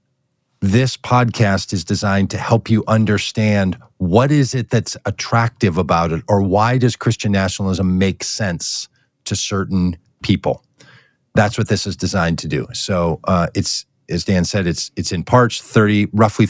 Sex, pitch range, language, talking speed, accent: male, 95-115 Hz, English, 160 wpm, American